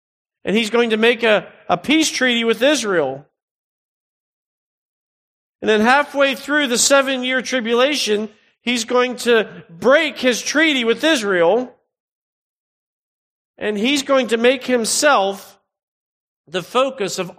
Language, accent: English, American